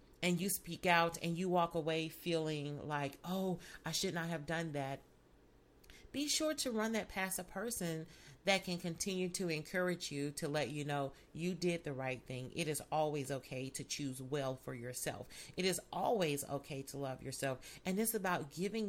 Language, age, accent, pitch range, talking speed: English, 40-59, American, 160-220 Hz, 190 wpm